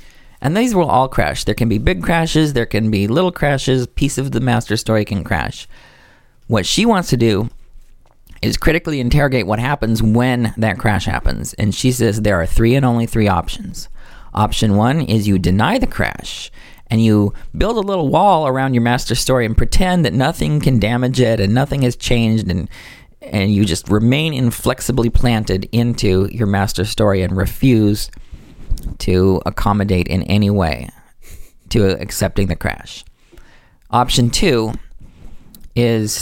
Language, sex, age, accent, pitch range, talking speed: English, male, 40-59, American, 100-130 Hz, 165 wpm